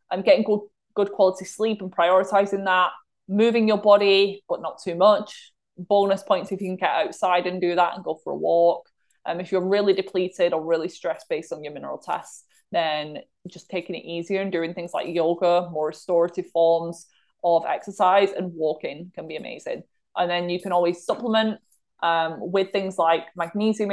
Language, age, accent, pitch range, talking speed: English, 20-39, British, 170-205 Hz, 190 wpm